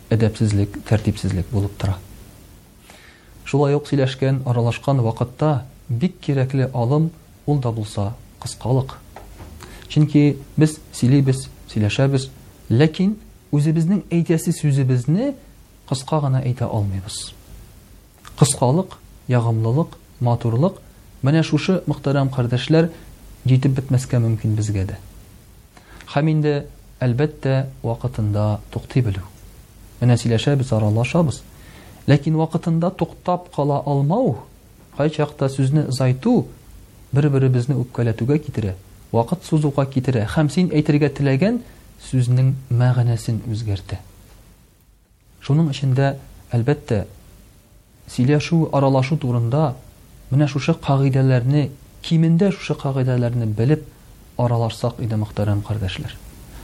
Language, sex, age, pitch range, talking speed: Russian, male, 40-59, 110-145 Hz, 85 wpm